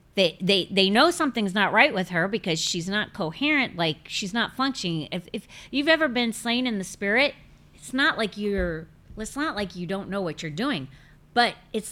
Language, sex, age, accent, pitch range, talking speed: English, female, 40-59, American, 155-205 Hz, 205 wpm